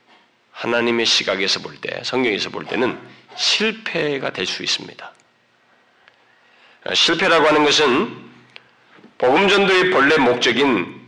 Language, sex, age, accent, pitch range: Korean, male, 40-59, native, 210-250 Hz